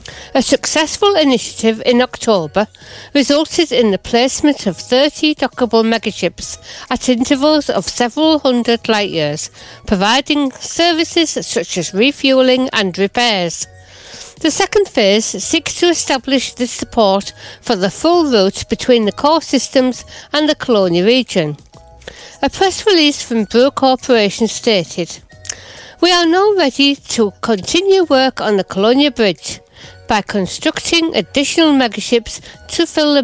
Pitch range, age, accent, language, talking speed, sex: 205-290 Hz, 60-79, British, English, 130 wpm, female